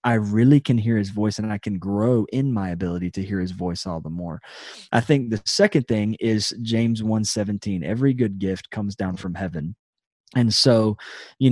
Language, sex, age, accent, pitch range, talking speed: English, male, 20-39, American, 100-120 Hz, 200 wpm